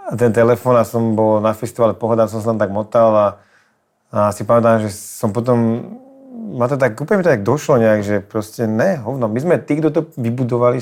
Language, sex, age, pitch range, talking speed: Czech, male, 30-49, 110-130 Hz, 205 wpm